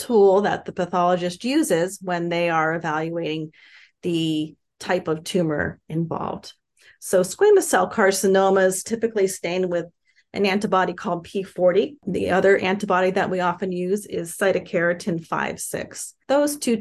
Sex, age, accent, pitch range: female, 30-49, American, 170-200 Hz